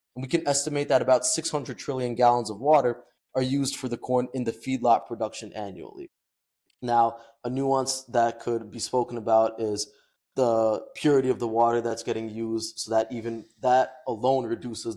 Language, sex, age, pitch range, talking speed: English, male, 20-39, 115-135 Hz, 175 wpm